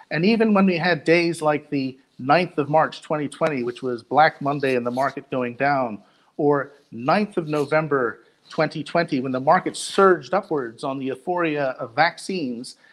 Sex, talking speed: male, 165 wpm